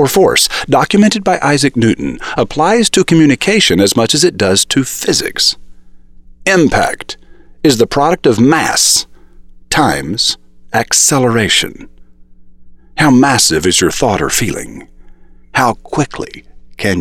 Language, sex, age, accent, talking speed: English, male, 50-69, American, 120 wpm